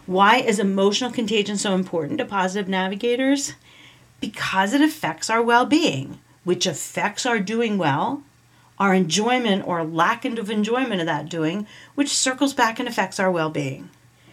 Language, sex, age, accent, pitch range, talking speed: English, female, 40-59, American, 180-235 Hz, 145 wpm